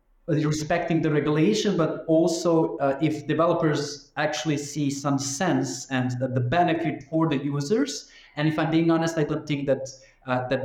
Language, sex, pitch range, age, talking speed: English, male, 140-165 Hz, 20-39, 165 wpm